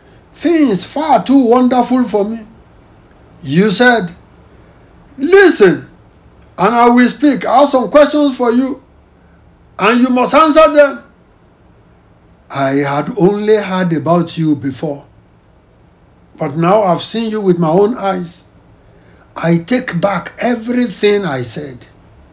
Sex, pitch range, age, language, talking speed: male, 165-250 Hz, 60-79, English, 125 wpm